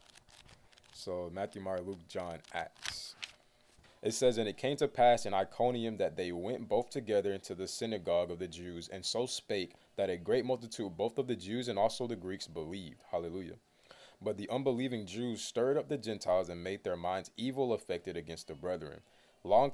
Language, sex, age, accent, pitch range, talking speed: English, male, 20-39, American, 95-125 Hz, 185 wpm